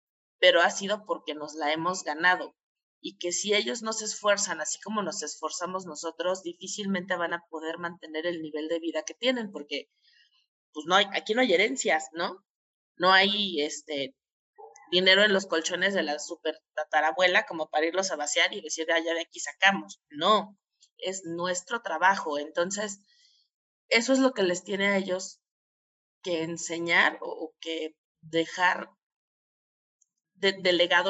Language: Spanish